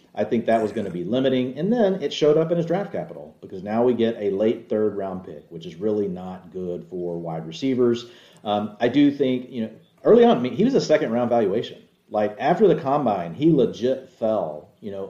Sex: male